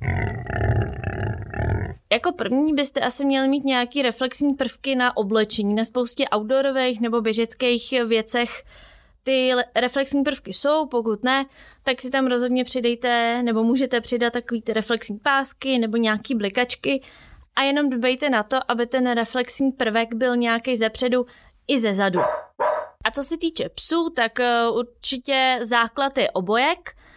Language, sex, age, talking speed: Czech, female, 20-39, 140 wpm